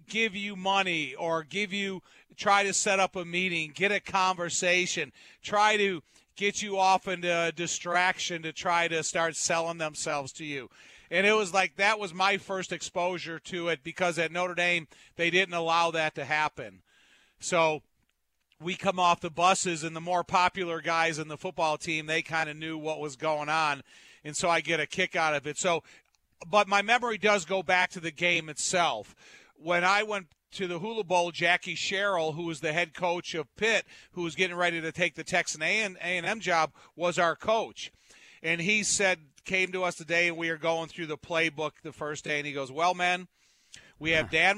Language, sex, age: English, male, 50-69